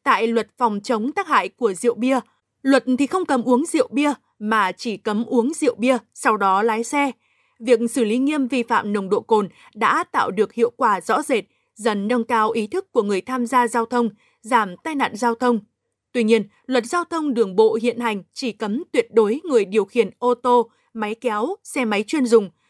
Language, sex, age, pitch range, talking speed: Vietnamese, female, 20-39, 225-265 Hz, 215 wpm